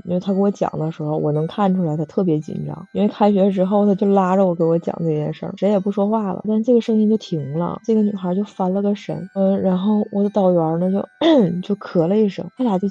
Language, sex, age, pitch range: Chinese, female, 20-39, 170-205 Hz